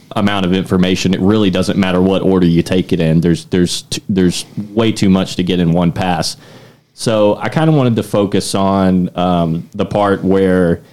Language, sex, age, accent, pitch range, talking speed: English, male, 30-49, American, 90-105 Hz, 200 wpm